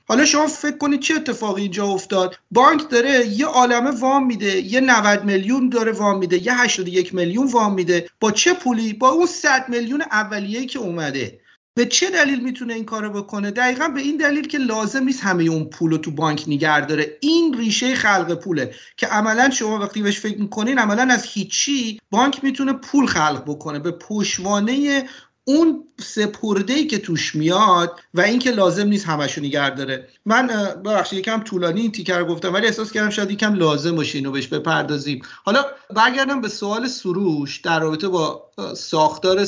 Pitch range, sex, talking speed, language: 165-240 Hz, male, 175 wpm, Persian